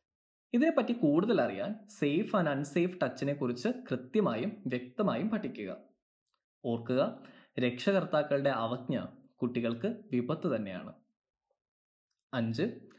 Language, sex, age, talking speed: Malayalam, male, 20-39, 85 wpm